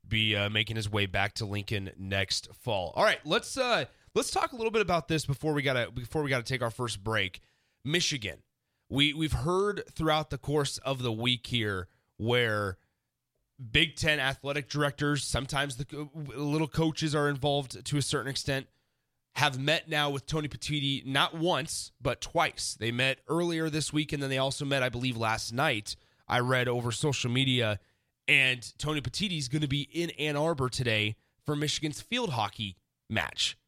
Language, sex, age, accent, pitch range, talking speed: English, male, 30-49, American, 115-150 Hz, 180 wpm